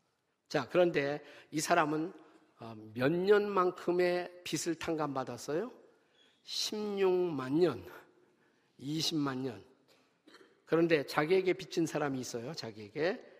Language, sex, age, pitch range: Korean, male, 50-69, 140-180 Hz